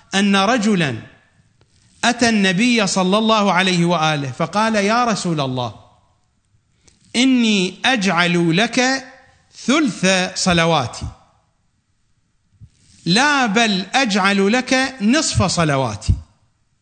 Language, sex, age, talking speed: English, male, 50-69, 80 wpm